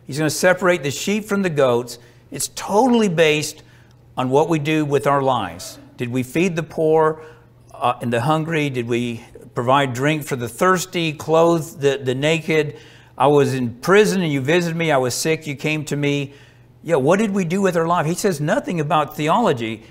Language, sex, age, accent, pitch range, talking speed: English, male, 50-69, American, 135-180 Hz, 200 wpm